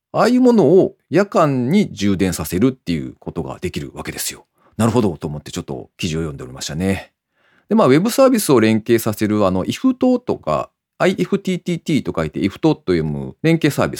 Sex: male